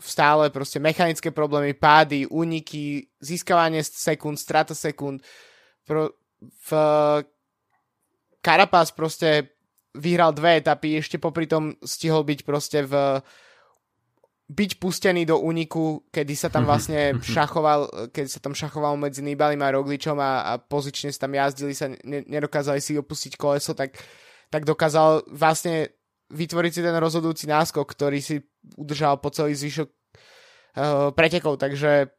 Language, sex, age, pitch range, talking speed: Slovak, male, 20-39, 140-155 Hz, 130 wpm